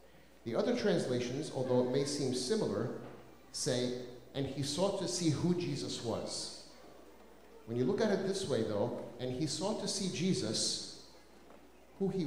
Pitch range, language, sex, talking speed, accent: 150-220 Hz, English, male, 160 wpm, American